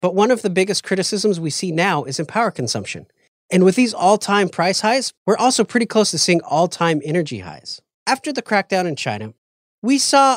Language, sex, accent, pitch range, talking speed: English, male, American, 155-210 Hz, 215 wpm